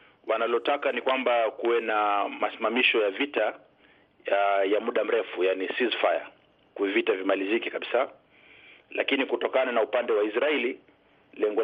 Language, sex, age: Swahili, male, 40-59